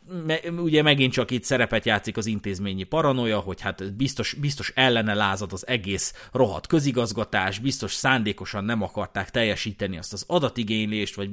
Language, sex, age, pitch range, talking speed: Hungarian, male, 30-49, 110-155 Hz, 145 wpm